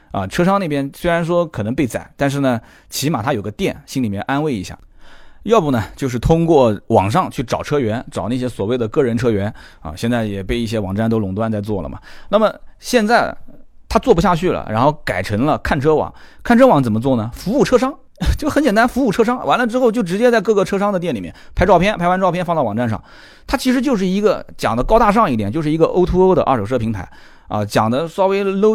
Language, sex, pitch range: Chinese, male, 110-180 Hz